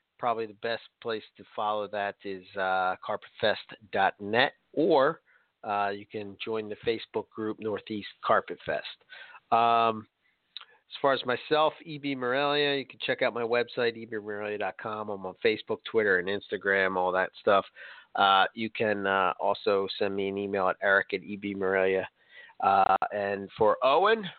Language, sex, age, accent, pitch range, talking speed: English, male, 40-59, American, 100-130 Hz, 150 wpm